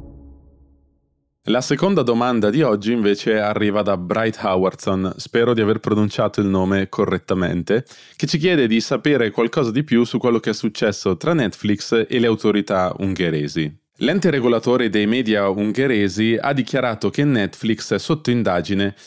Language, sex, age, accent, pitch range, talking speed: Italian, male, 20-39, native, 95-120 Hz, 150 wpm